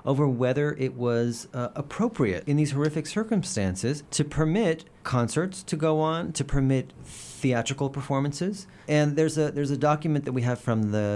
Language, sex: English, male